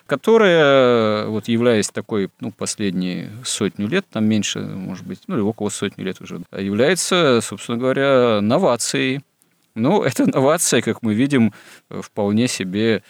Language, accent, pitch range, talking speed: Russian, native, 95-110 Hz, 140 wpm